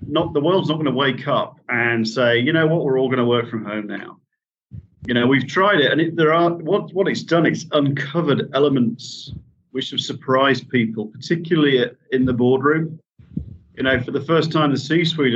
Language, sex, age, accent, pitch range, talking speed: English, male, 40-59, British, 120-150 Hz, 205 wpm